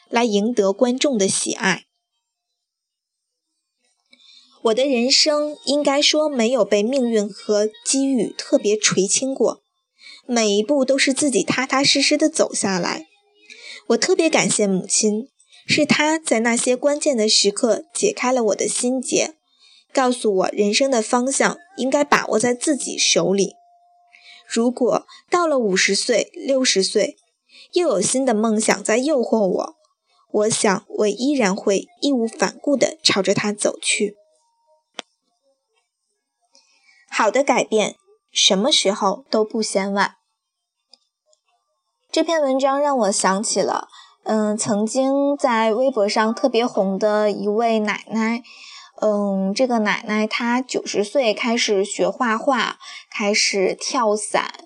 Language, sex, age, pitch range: Chinese, female, 20-39, 210-295 Hz